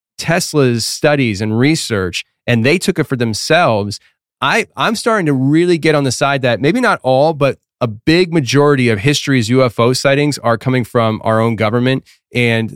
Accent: American